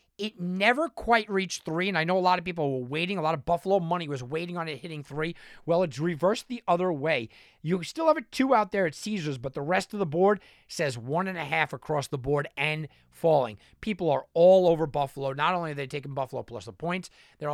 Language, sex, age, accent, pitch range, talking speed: English, male, 30-49, American, 150-195 Hz, 245 wpm